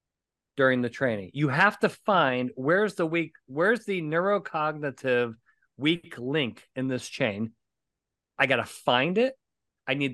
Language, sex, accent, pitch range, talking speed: English, male, American, 120-190 Hz, 150 wpm